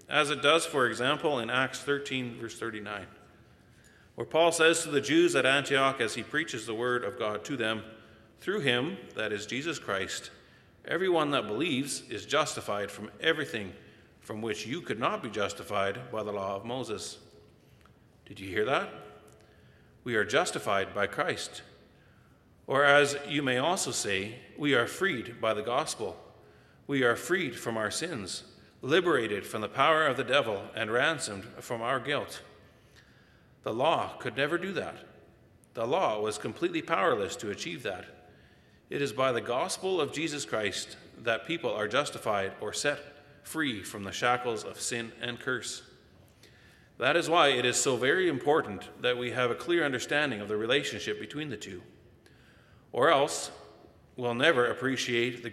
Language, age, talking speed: English, 40-59, 165 wpm